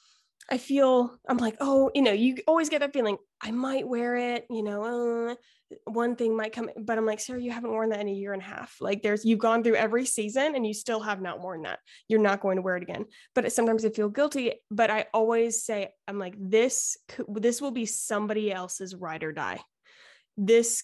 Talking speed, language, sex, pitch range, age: 230 wpm, English, female, 200-235 Hz, 20-39